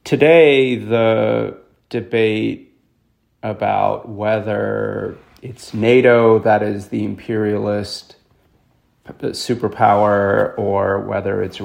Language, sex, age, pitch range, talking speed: English, male, 30-49, 110-130 Hz, 75 wpm